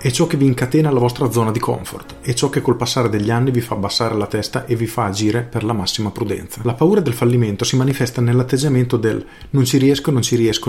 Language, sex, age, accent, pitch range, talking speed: Italian, male, 40-59, native, 110-135 Hz, 245 wpm